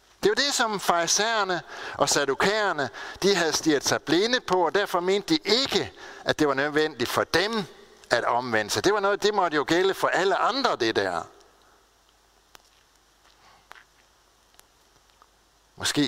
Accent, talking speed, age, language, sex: native, 145 wpm, 60-79, Danish, male